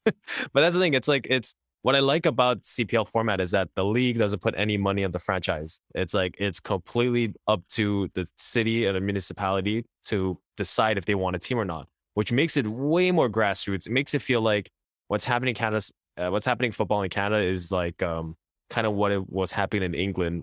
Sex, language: male, English